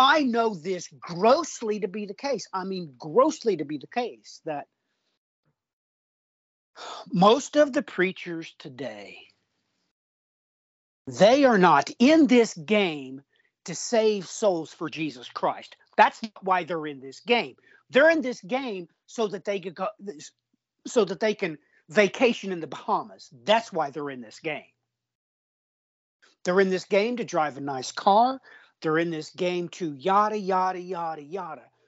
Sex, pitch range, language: male, 170-240 Hz, English